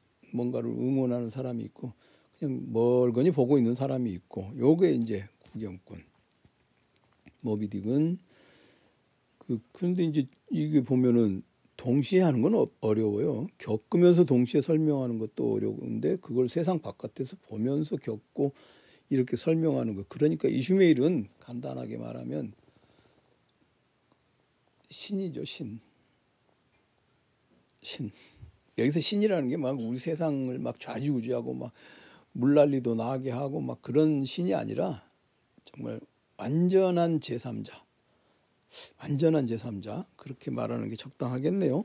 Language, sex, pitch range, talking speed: English, male, 115-160 Hz, 95 wpm